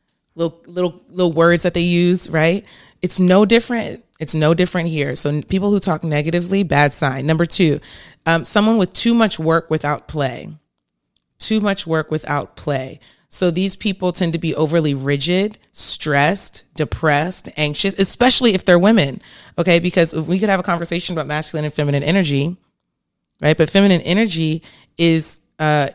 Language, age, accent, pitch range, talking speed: English, 30-49, American, 145-180 Hz, 160 wpm